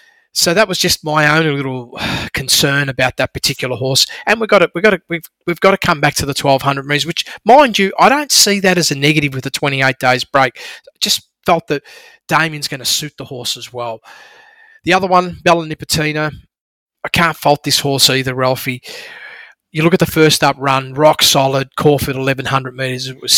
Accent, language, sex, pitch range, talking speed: Australian, English, male, 135-170 Hz, 210 wpm